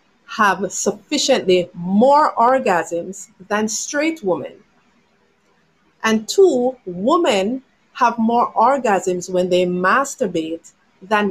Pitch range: 185-250 Hz